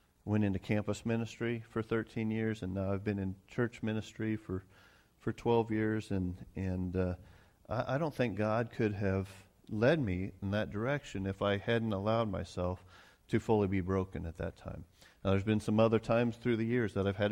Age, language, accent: 40-59, English, American